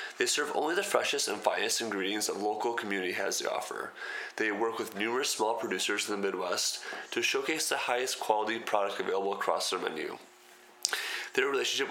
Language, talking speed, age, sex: English, 175 wpm, 20-39, male